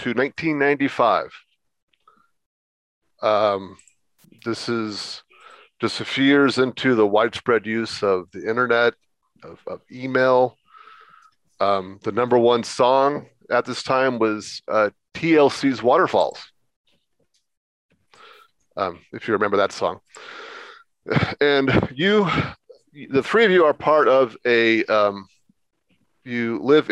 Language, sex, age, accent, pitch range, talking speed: English, male, 30-49, American, 110-145 Hz, 110 wpm